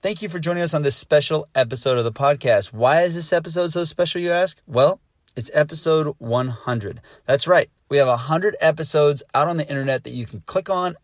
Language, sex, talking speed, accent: English, male, 210 wpm, American